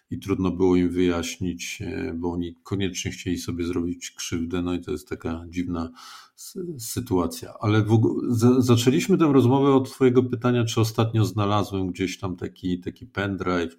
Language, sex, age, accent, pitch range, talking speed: Polish, male, 50-69, native, 95-125 Hz, 165 wpm